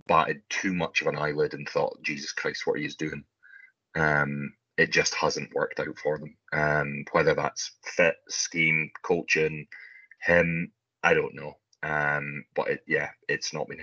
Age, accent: 30-49, British